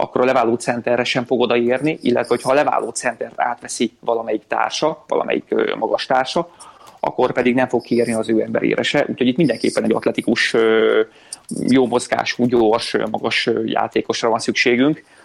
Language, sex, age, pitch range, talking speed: Hungarian, male, 30-49, 115-130 Hz, 150 wpm